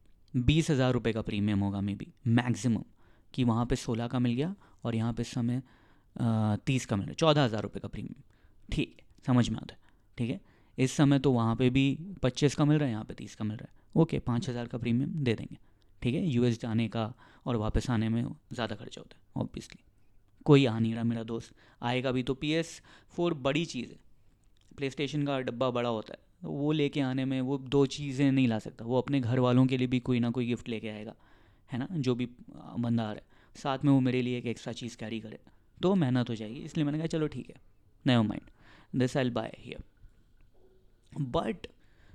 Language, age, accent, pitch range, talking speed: Hindi, 20-39, native, 115-135 Hz, 215 wpm